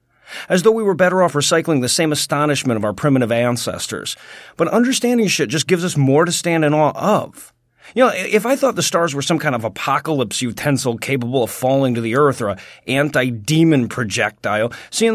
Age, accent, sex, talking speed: 40-59, American, male, 200 wpm